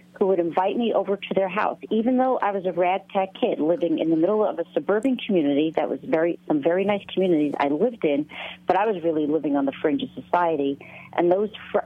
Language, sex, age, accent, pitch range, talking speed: English, female, 50-69, American, 160-205 Hz, 240 wpm